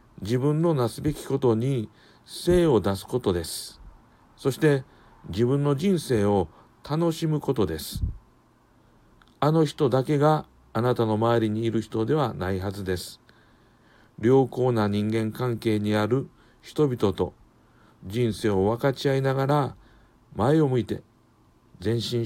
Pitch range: 100-130 Hz